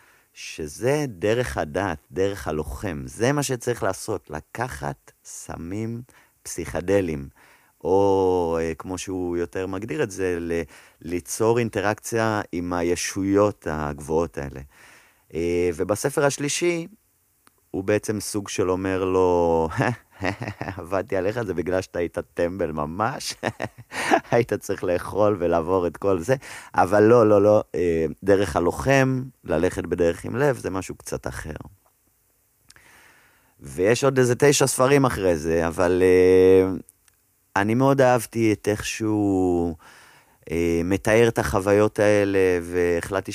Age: 30-49